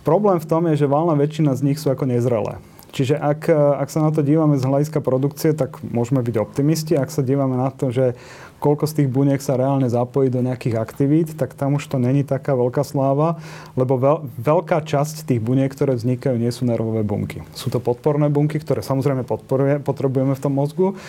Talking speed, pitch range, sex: 200 wpm, 125-150 Hz, male